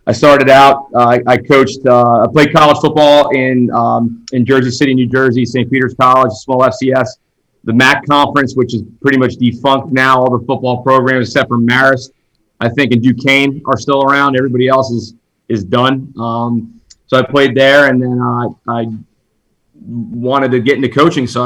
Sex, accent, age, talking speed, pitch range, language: male, American, 30-49, 185 wpm, 125-135 Hz, English